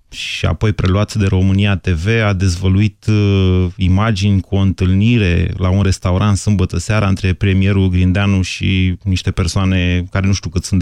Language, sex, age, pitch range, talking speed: Romanian, male, 30-49, 95-110 Hz, 160 wpm